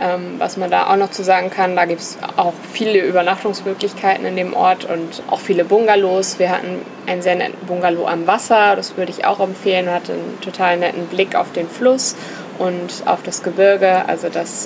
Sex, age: female, 20-39